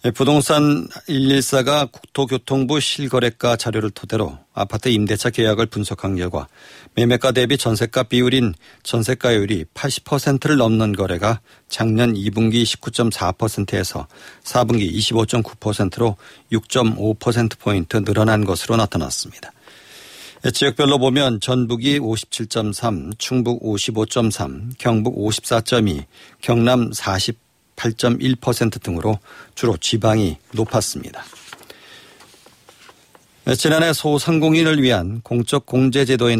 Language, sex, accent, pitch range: Korean, male, native, 105-130 Hz